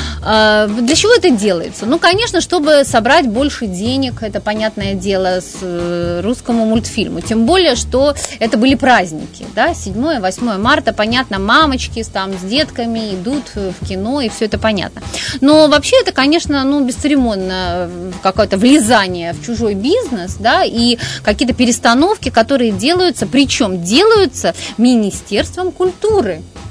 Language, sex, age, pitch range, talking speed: Russian, female, 30-49, 210-295 Hz, 130 wpm